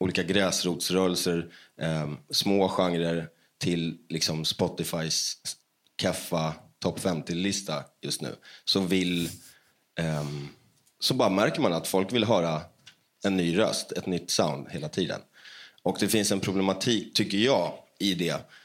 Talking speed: 130 wpm